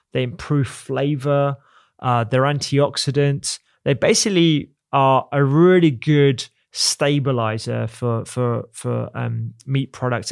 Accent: British